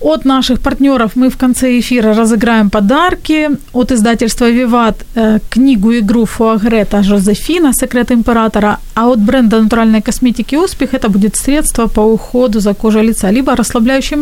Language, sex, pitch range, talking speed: Ukrainian, female, 210-260 Hz, 140 wpm